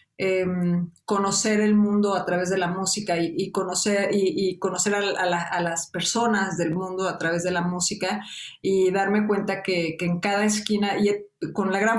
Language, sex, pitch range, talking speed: English, female, 185-215 Hz, 200 wpm